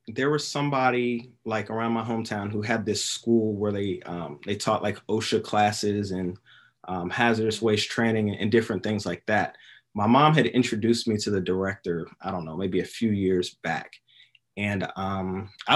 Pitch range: 100-120 Hz